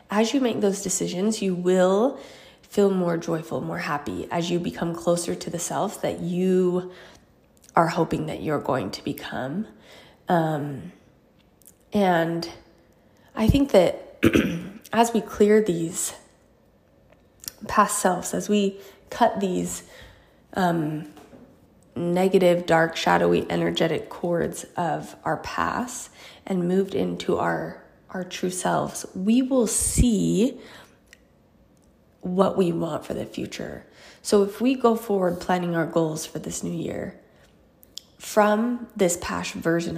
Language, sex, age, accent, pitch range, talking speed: English, female, 20-39, American, 165-195 Hz, 125 wpm